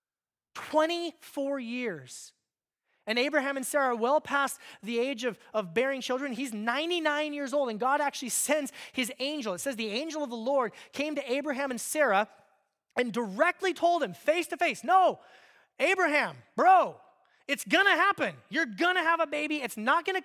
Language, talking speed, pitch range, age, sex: English, 170 wpm, 210-300 Hz, 30-49, male